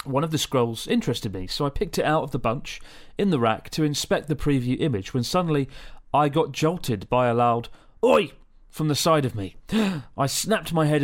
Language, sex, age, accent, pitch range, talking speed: English, male, 30-49, British, 125-165 Hz, 215 wpm